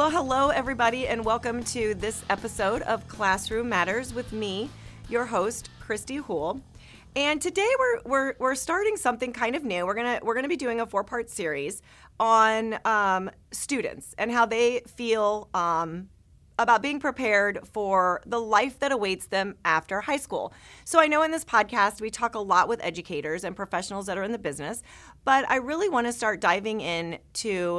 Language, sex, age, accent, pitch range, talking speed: English, female, 30-49, American, 175-240 Hz, 180 wpm